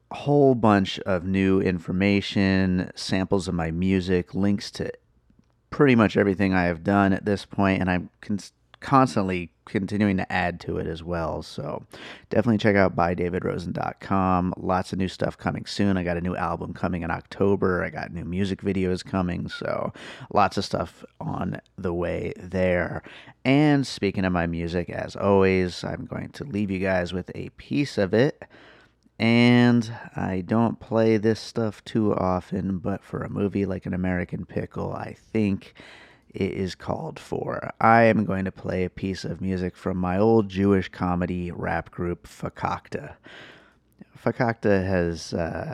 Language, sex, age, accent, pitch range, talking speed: English, male, 30-49, American, 90-105 Hz, 160 wpm